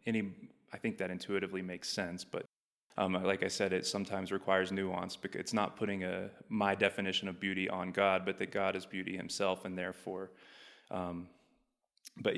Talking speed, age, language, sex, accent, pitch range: 180 wpm, 20-39, English, male, American, 95-100 Hz